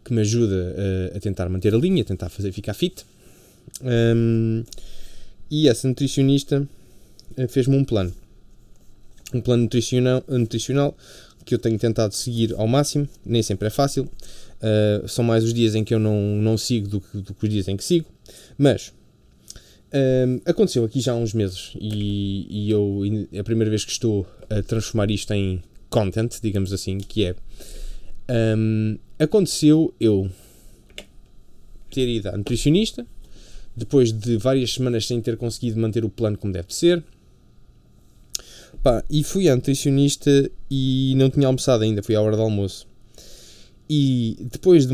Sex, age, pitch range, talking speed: male, 20-39, 105-130 Hz, 160 wpm